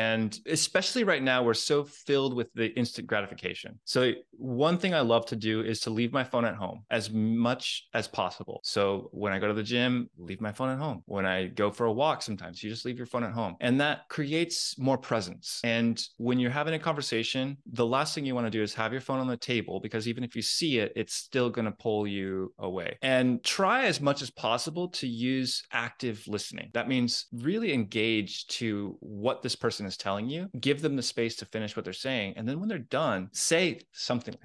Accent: American